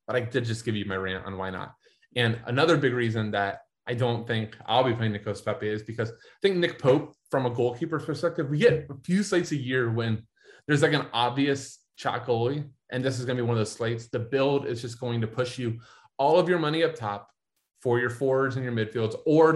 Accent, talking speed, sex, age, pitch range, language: American, 240 wpm, male, 20-39, 115-135 Hz, English